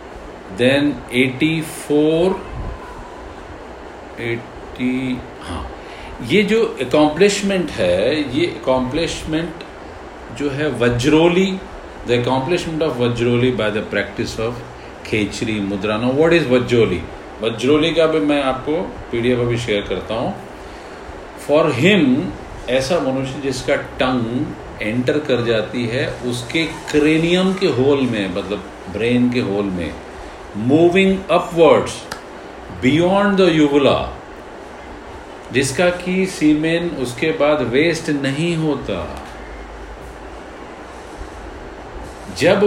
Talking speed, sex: 100 wpm, male